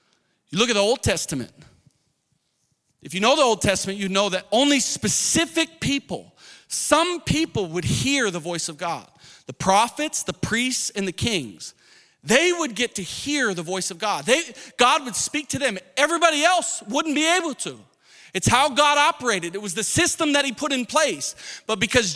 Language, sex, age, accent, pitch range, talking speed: English, male, 40-59, American, 200-295 Hz, 185 wpm